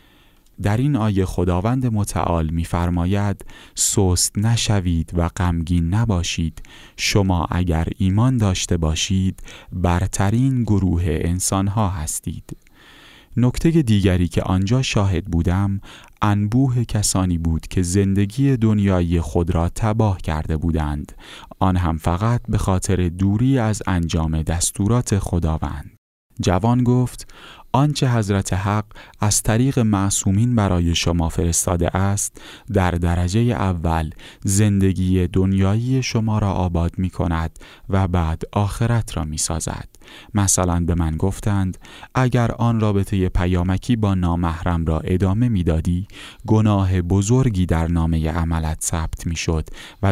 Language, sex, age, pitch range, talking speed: Persian, male, 30-49, 85-105 Hz, 115 wpm